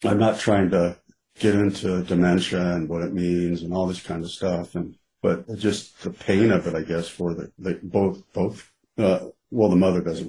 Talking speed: 210 wpm